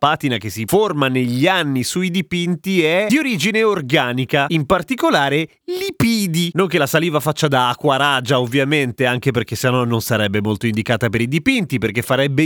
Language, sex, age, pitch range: Italian, male, 30-49, 130-180 Hz